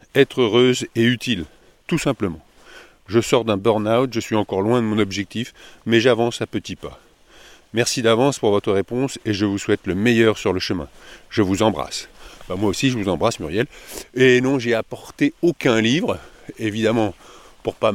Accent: French